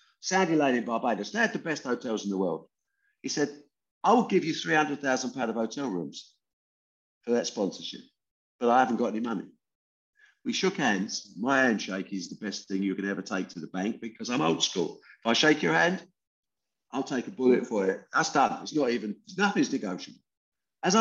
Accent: British